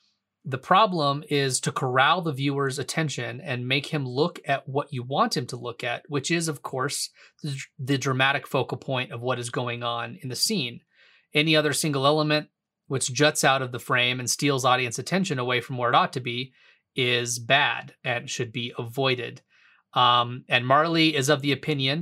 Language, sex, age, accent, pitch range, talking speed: English, male, 30-49, American, 125-150 Hz, 190 wpm